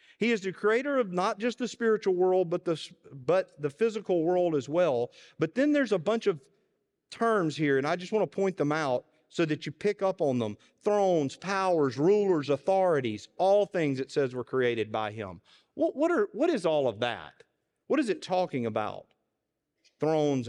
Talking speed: 195 wpm